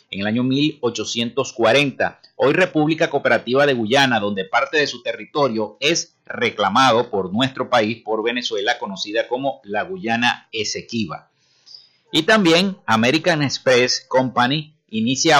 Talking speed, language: 125 wpm, Spanish